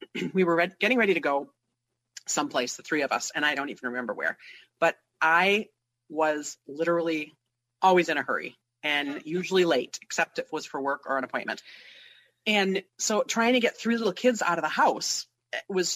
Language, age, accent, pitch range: English, 40-59, American, 160-245 Hz